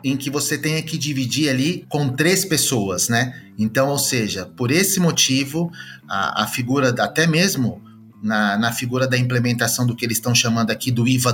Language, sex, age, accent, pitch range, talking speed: English, male, 30-49, Brazilian, 115-155 Hz, 185 wpm